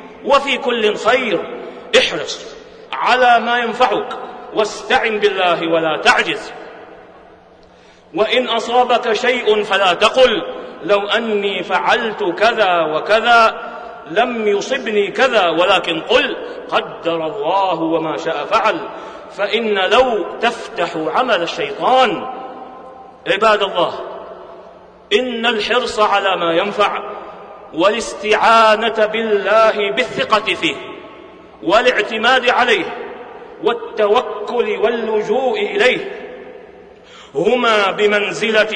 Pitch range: 205-250 Hz